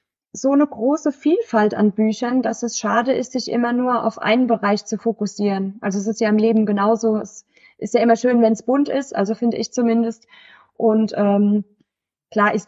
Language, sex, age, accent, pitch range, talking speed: German, female, 20-39, German, 215-245 Hz, 200 wpm